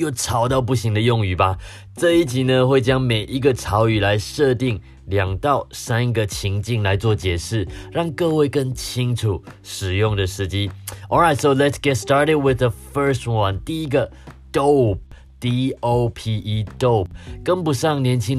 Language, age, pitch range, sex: Chinese, 30-49, 95-125 Hz, male